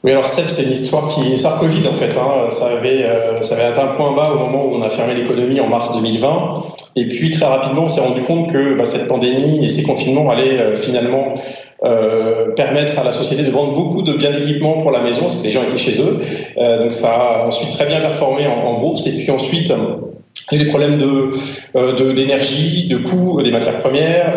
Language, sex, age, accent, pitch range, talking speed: French, male, 30-49, French, 120-145 Hz, 240 wpm